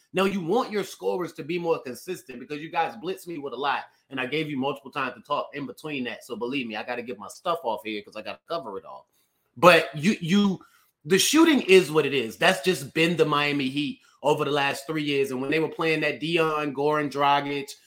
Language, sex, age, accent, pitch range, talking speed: English, male, 30-49, American, 150-200 Hz, 250 wpm